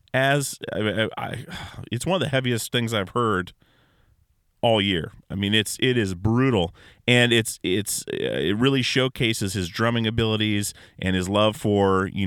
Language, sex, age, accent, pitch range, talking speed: English, male, 30-49, American, 100-120 Hz, 160 wpm